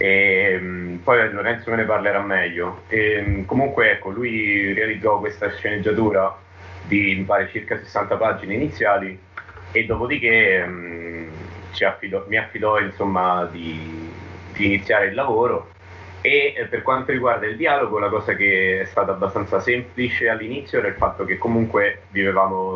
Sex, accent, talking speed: male, native, 150 wpm